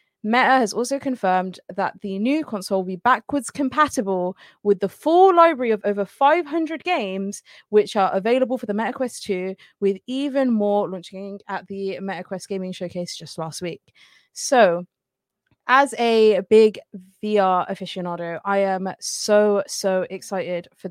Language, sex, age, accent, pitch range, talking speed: English, female, 20-39, British, 185-235 Hz, 145 wpm